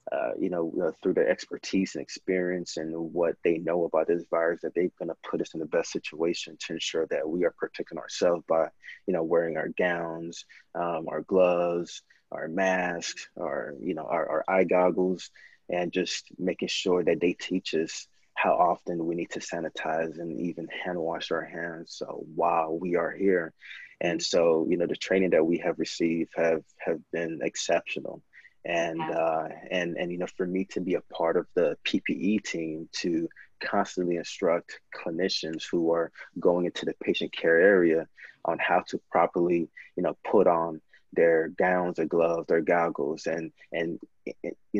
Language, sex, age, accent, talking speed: English, male, 30-49, American, 180 wpm